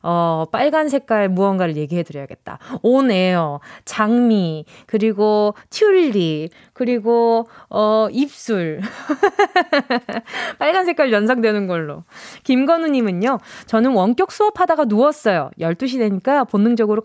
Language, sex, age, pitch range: Korean, female, 20-39, 195-290 Hz